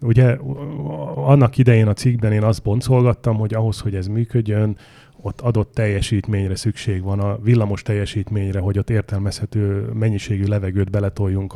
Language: Hungarian